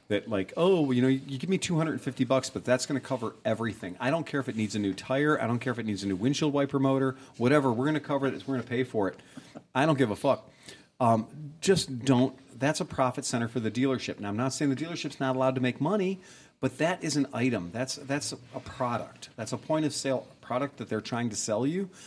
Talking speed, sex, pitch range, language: 260 wpm, male, 110-140 Hz, English